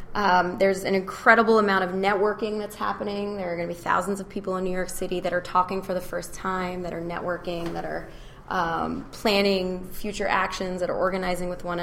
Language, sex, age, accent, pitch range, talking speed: English, female, 20-39, American, 175-200 Hz, 215 wpm